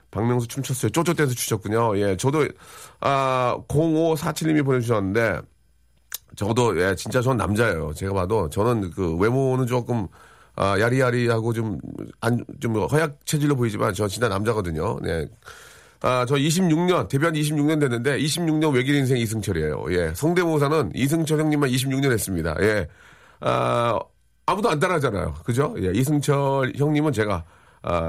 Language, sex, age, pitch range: Korean, male, 40-59, 105-150 Hz